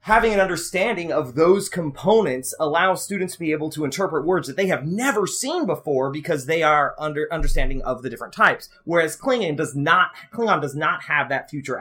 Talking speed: 200 wpm